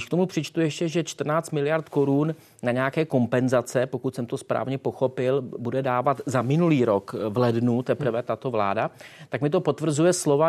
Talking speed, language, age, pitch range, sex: 175 wpm, Czech, 30-49, 125-145 Hz, male